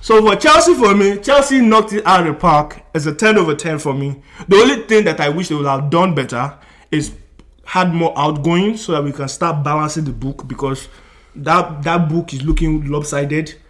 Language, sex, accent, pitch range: English, male, Nigerian, 145-200 Hz